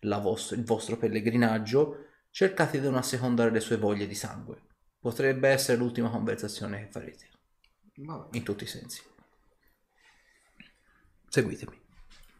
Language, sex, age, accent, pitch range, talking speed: Italian, male, 30-49, native, 115-145 Hz, 120 wpm